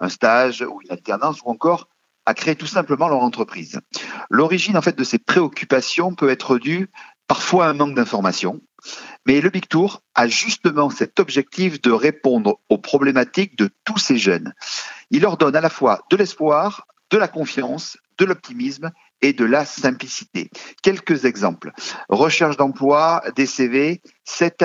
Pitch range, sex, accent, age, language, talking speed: 130-185 Hz, male, French, 50-69, French, 165 wpm